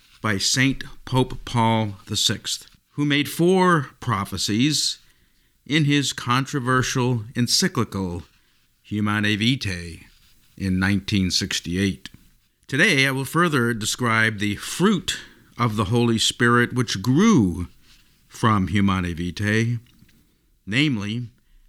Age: 50-69